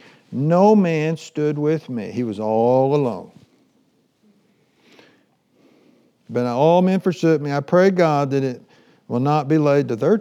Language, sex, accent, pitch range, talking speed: English, male, American, 140-200 Hz, 145 wpm